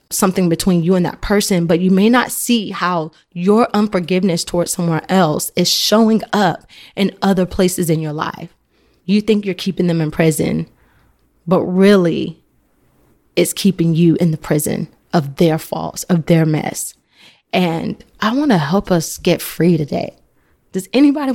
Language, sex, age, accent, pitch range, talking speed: English, female, 20-39, American, 170-210 Hz, 165 wpm